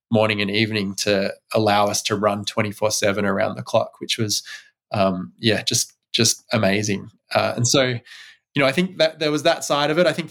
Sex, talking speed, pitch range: male, 210 wpm, 110-130 Hz